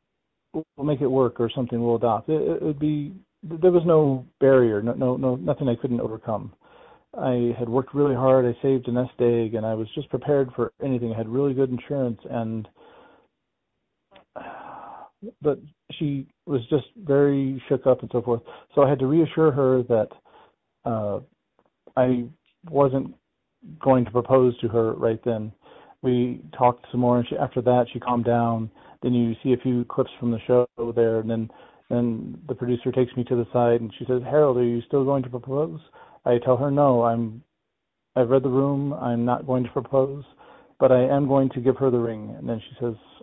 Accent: American